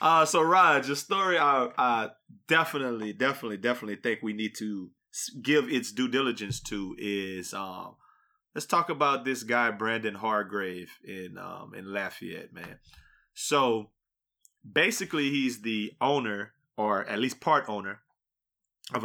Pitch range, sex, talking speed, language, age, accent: 105-140 Hz, male, 140 wpm, English, 30-49, American